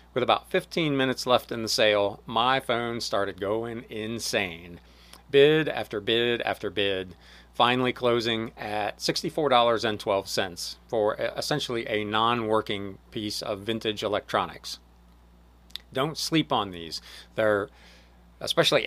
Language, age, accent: English, 40-59, American